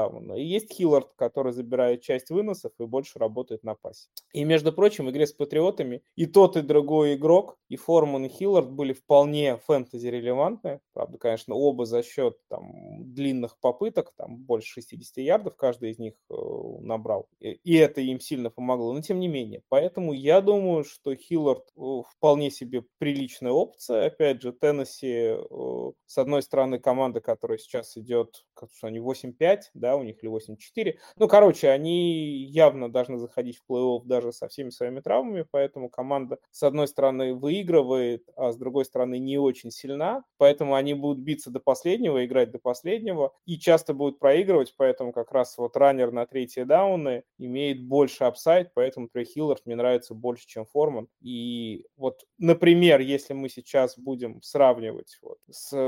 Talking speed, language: 165 wpm, Russian